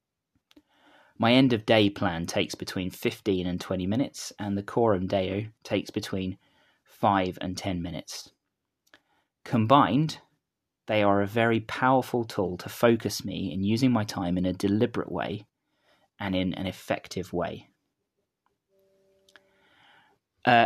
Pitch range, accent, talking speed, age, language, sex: 95-125 Hz, British, 130 wpm, 30-49, English, male